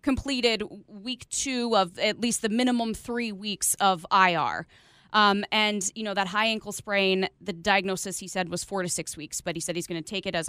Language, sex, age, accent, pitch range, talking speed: English, female, 20-39, American, 185-225 Hz, 215 wpm